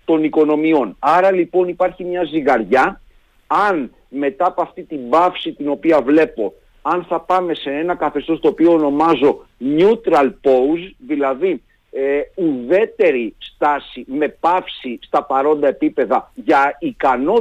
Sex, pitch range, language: male, 150-210 Hz, Greek